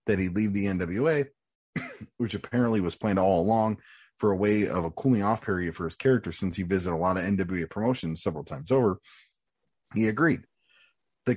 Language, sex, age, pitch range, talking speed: English, male, 30-49, 90-120 Hz, 185 wpm